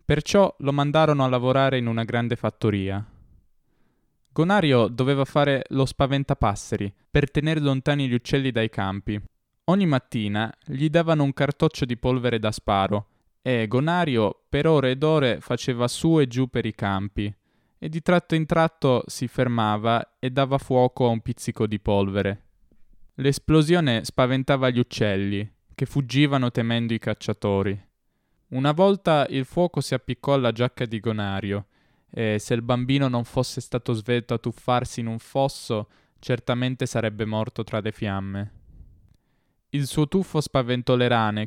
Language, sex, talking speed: Italian, male, 150 wpm